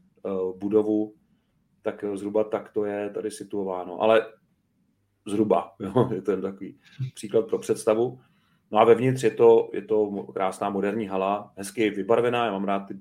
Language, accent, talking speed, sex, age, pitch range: Czech, native, 150 wpm, male, 40-59, 100-110 Hz